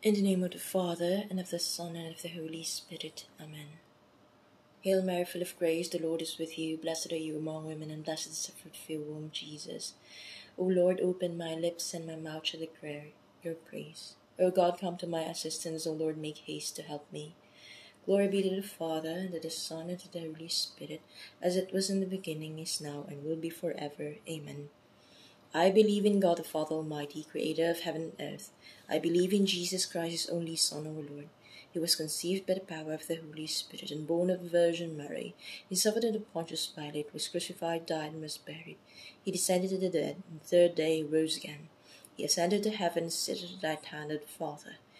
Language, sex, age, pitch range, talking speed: English, female, 20-39, 155-175 Hz, 220 wpm